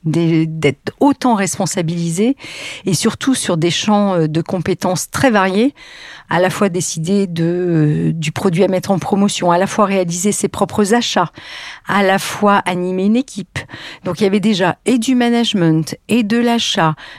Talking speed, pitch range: 170 wpm, 165-210 Hz